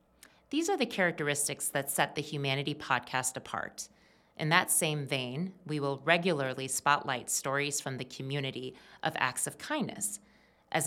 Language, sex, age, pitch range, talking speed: English, female, 30-49, 140-180 Hz, 150 wpm